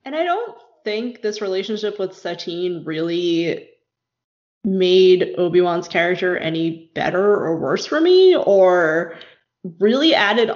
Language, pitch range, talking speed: English, 175-205 Hz, 120 wpm